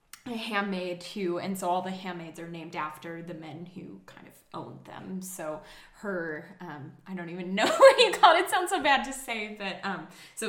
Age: 10-29